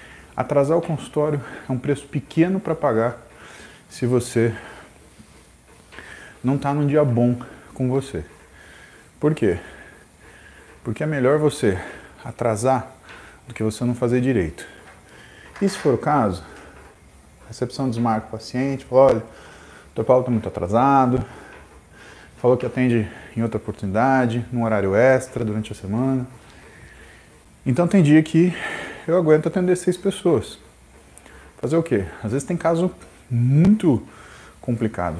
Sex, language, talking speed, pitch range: male, Portuguese, 135 wpm, 110-150 Hz